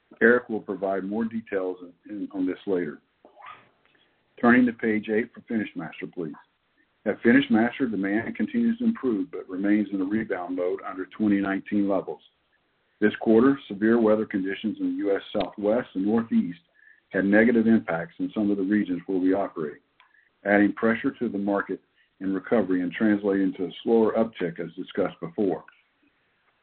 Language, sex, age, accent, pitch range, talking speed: English, male, 50-69, American, 95-115 Hz, 160 wpm